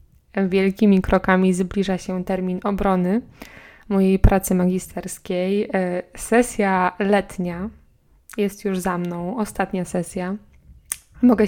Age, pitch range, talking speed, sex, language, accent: 20-39, 185-210 Hz, 95 wpm, female, Polish, native